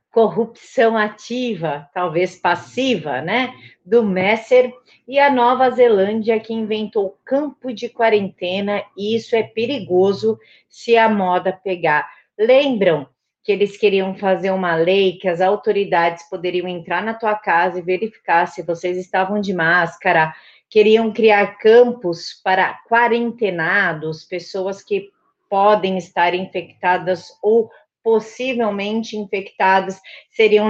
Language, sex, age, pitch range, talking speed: Portuguese, female, 40-59, 185-225 Hz, 120 wpm